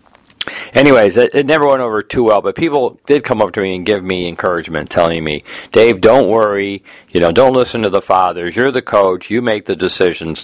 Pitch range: 85-115 Hz